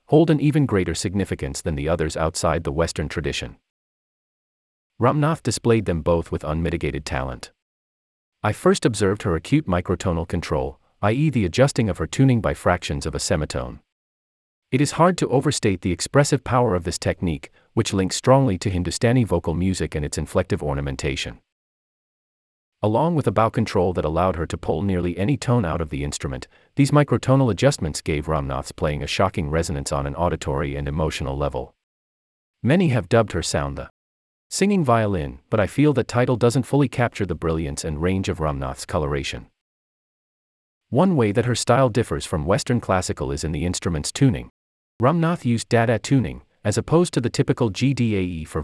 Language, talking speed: English, 170 wpm